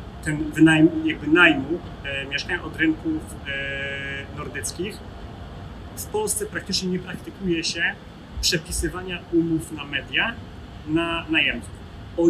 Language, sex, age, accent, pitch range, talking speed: Polish, male, 30-49, native, 150-180 Hz, 110 wpm